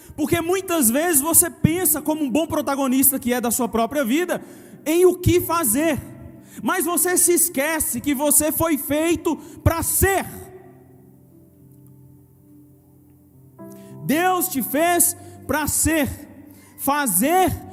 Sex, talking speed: male, 120 wpm